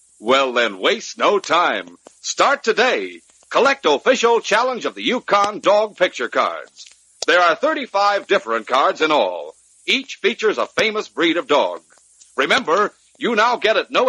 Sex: male